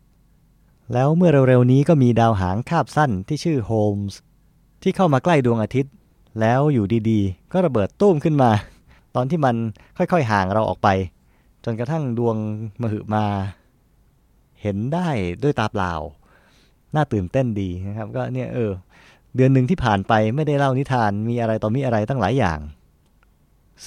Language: Thai